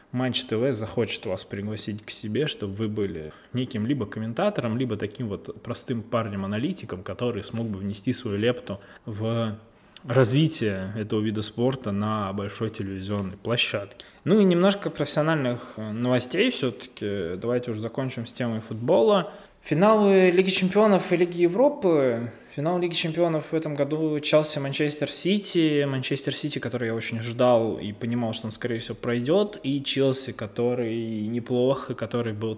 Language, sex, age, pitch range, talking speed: Russian, male, 20-39, 105-145 Hz, 145 wpm